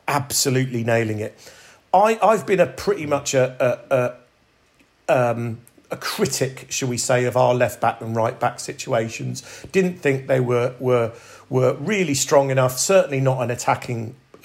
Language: English